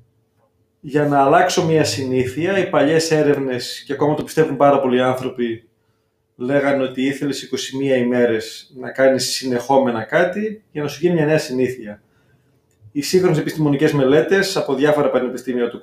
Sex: male